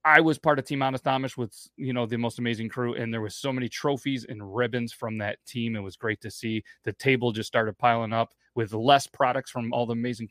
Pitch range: 110-130 Hz